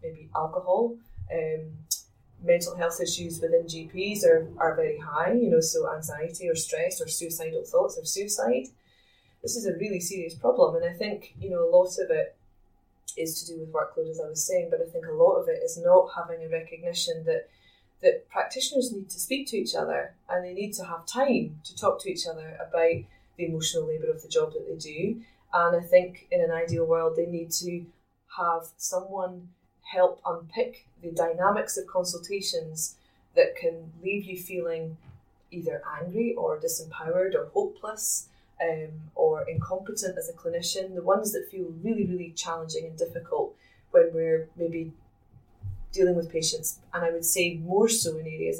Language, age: English, 20-39